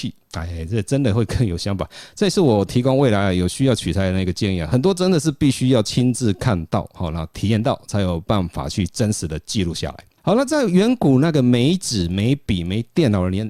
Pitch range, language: 95-125 Hz, Chinese